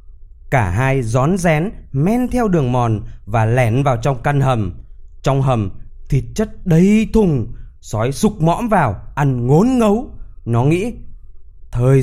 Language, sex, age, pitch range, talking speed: Vietnamese, male, 20-39, 115-170 Hz, 150 wpm